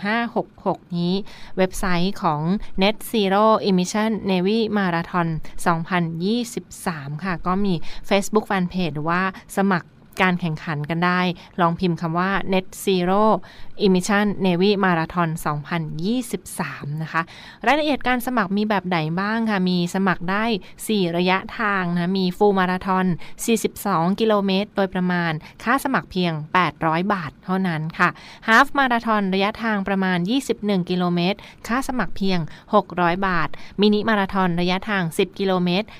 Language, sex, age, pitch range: Thai, female, 20-39, 175-205 Hz